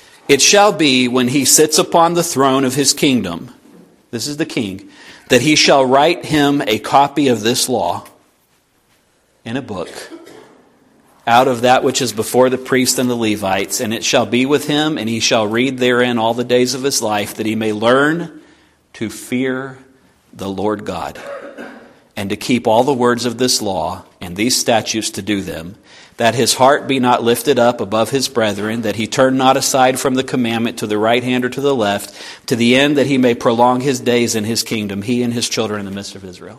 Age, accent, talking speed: 50-69, American, 210 wpm